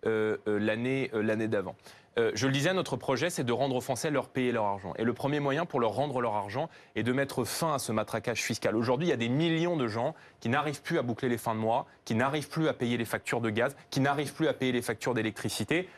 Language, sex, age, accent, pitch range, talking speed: French, male, 20-39, French, 115-140 Hz, 270 wpm